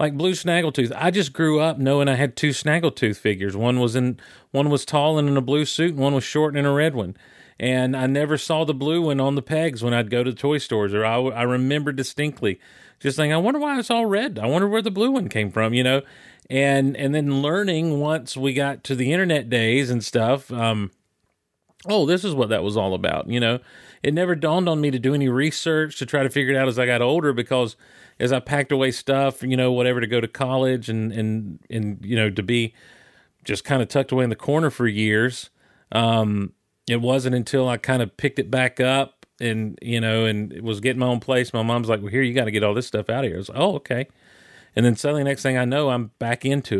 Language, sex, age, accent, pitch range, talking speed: English, male, 40-59, American, 115-145 Hz, 255 wpm